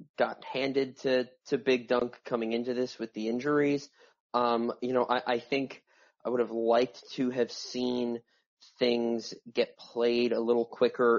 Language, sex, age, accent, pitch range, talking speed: English, male, 20-39, American, 110-125 Hz, 165 wpm